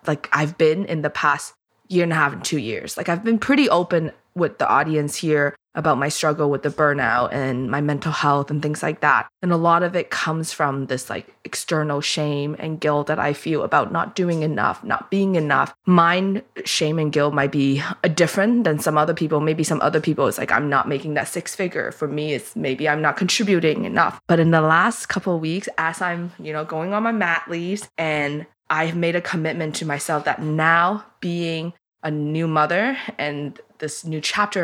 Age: 20-39